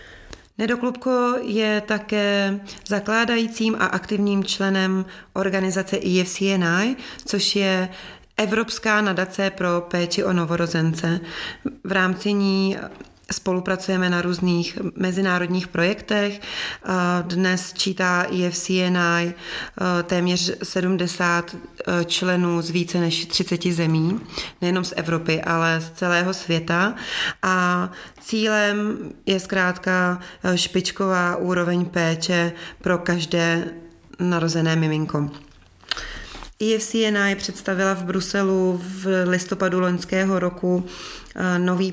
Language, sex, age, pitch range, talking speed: Czech, female, 30-49, 175-195 Hz, 90 wpm